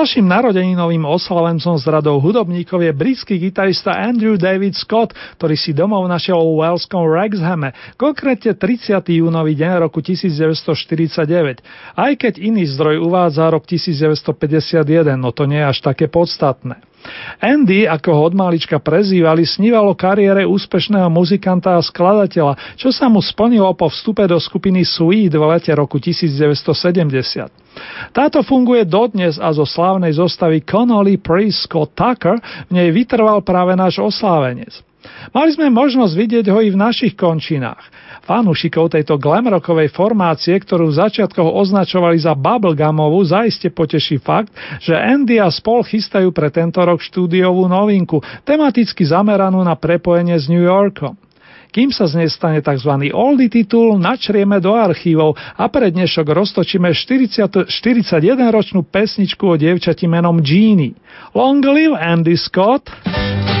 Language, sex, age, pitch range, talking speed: Slovak, male, 40-59, 160-205 Hz, 135 wpm